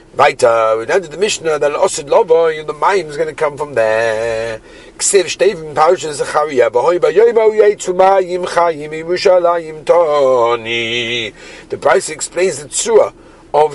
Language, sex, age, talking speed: English, male, 50-69, 105 wpm